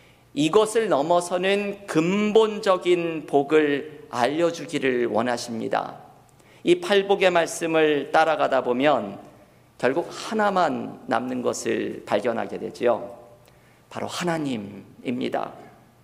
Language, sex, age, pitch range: Korean, male, 50-69, 135-175 Hz